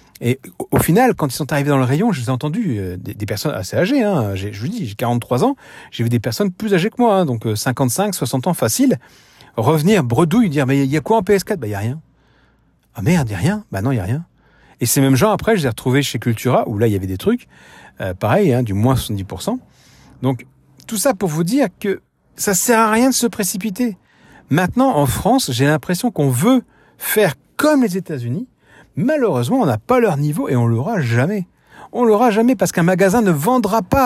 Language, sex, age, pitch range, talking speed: French, male, 40-59, 125-205 Hz, 250 wpm